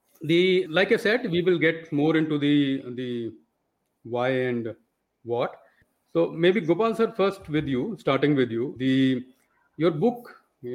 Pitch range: 125-160 Hz